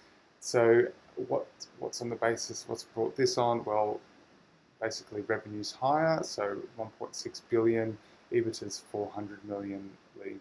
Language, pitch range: English, 105-120 Hz